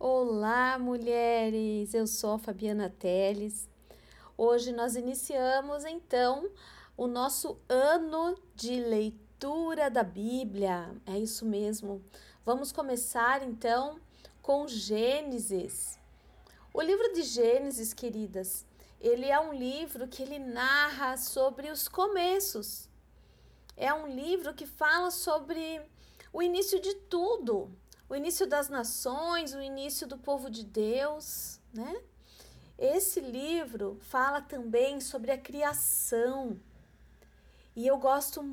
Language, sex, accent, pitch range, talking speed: Portuguese, female, Brazilian, 235-295 Hz, 110 wpm